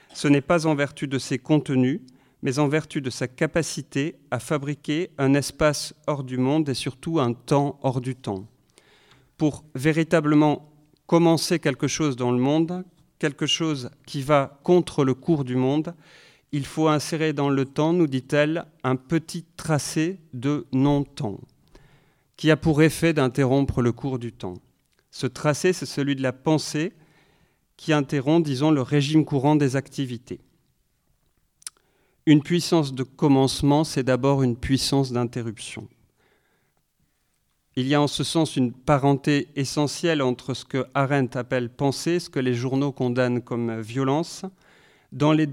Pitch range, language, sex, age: 130-155 Hz, French, male, 40-59